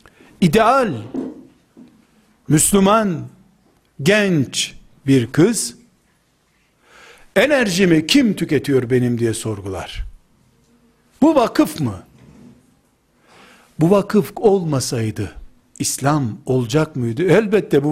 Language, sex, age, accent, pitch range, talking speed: Turkish, male, 60-79, native, 120-190 Hz, 75 wpm